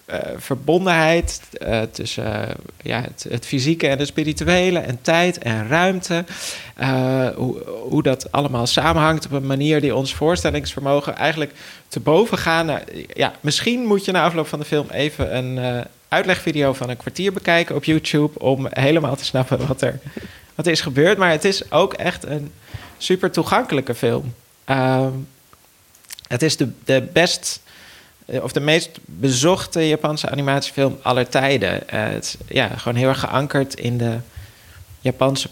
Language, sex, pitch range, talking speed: Dutch, male, 120-155 Hz, 160 wpm